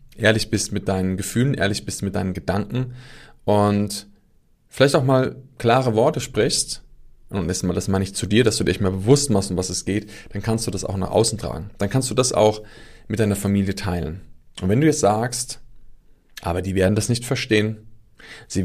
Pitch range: 95-120 Hz